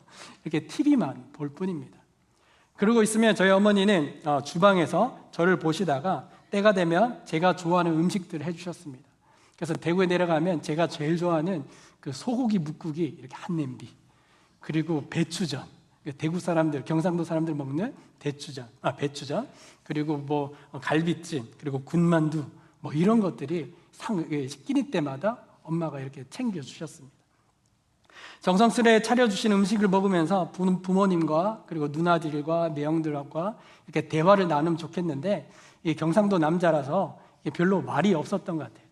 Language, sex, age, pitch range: Korean, male, 60-79, 155-195 Hz